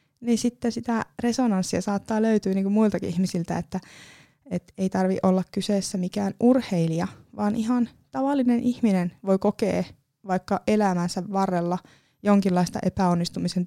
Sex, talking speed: female, 125 wpm